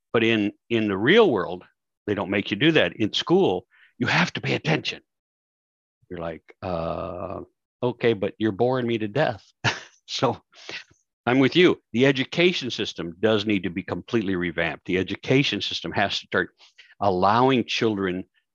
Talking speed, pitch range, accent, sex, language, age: 160 wpm, 105-135 Hz, American, male, English, 60-79